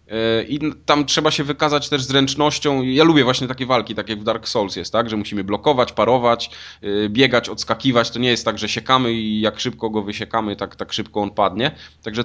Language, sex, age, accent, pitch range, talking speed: Polish, male, 20-39, native, 105-135 Hz, 200 wpm